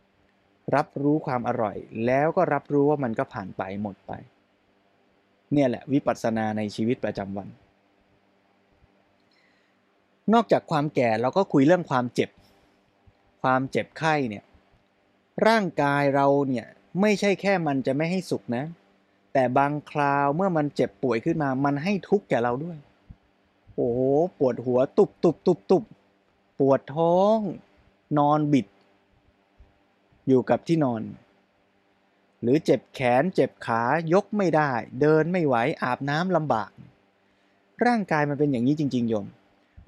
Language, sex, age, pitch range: Thai, male, 20-39, 100-150 Hz